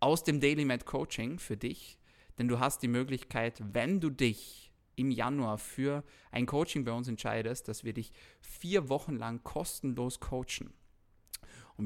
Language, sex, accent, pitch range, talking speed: German, male, German, 110-140 Hz, 160 wpm